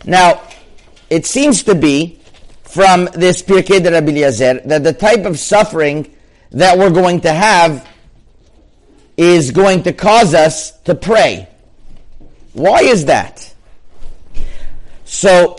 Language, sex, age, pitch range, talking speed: English, male, 50-69, 145-185 Hz, 125 wpm